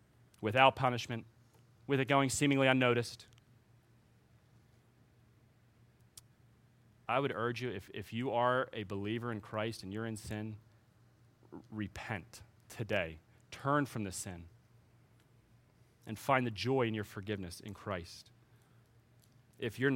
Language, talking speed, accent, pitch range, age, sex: English, 120 wpm, American, 115-125 Hz, 30-49, male